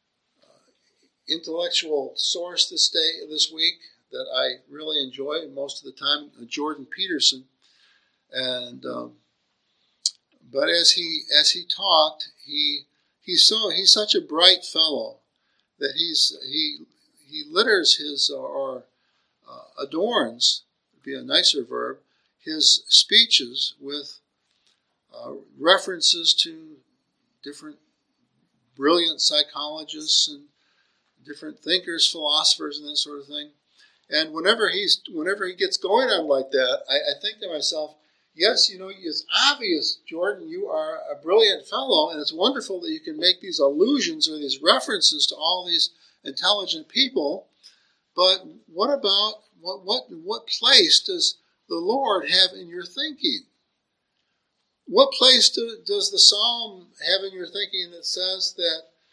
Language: English